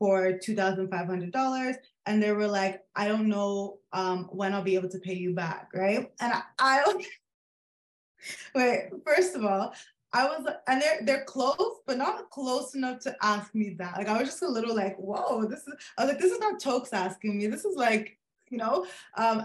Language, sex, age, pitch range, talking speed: English, female, 20-39, 190-230 Hz, 205 wpm